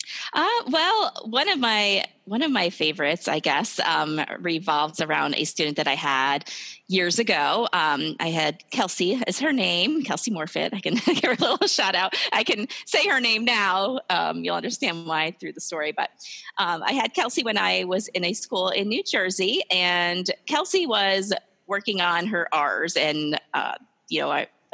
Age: 30-49